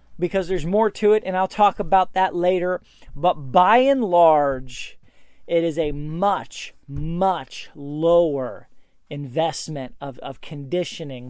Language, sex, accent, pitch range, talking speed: English, male, American, 145-195 Hz, 135 wpm